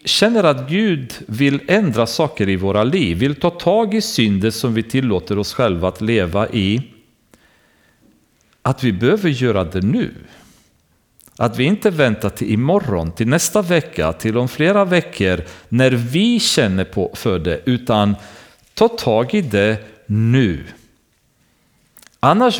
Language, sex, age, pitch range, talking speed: Swedish, male, 40-59, 105-165 Hz, 140 wpm